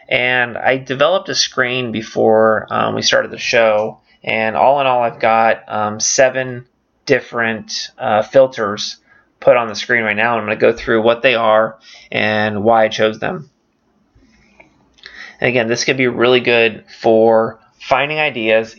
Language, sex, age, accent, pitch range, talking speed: English, male, 20-39, American, 110-120 Hz, 165 wpm